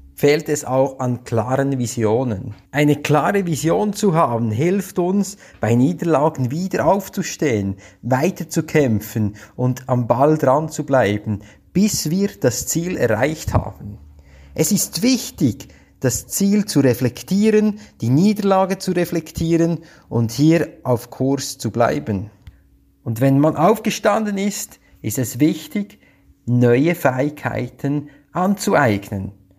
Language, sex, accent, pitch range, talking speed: German, male, Austrian, 115-175 Hz, 120 wpm